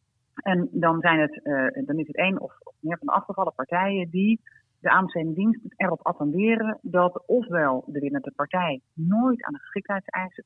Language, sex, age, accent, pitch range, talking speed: Dutch, female, 40-59, Dutch, 160-225 Hz, 170 wpm